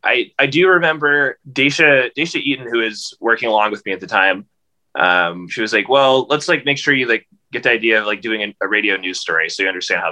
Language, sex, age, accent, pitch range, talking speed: English, male, 20-39, American, 95-125 Hz, 250 wpm